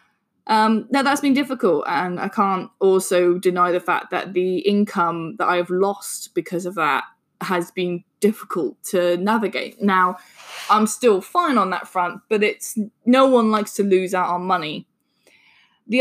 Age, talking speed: 20-39, 165 wpm